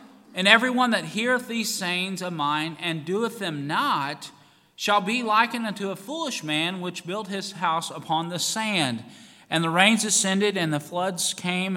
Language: English